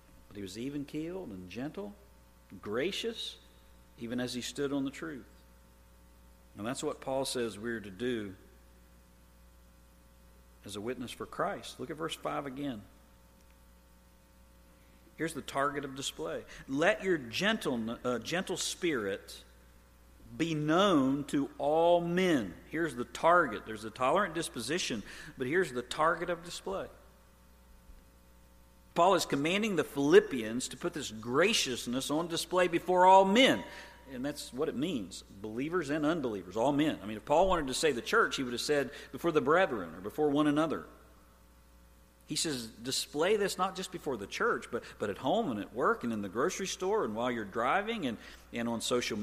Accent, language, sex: American, English, male